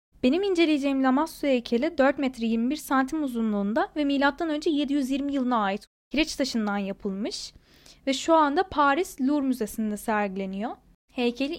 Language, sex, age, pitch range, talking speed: Turkish, female, 10-29, 235-300 Hz, 130 wpm